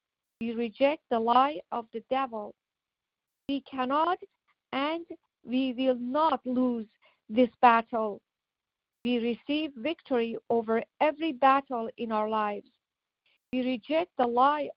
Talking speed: 120 wpm